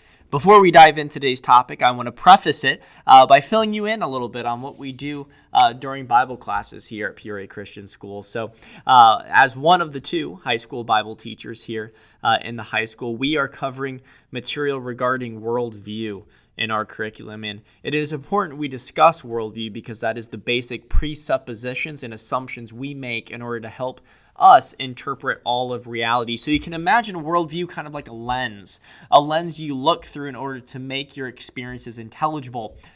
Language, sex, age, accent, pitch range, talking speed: English, male, 20-39, American, 115-150 Hz, 195 wpm